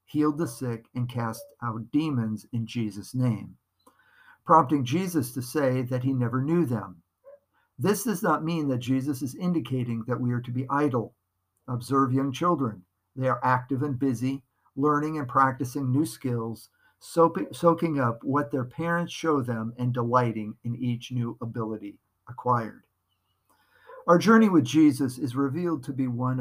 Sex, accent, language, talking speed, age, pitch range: male, American, English, 155 wpm, 50-69, 115-150 Hz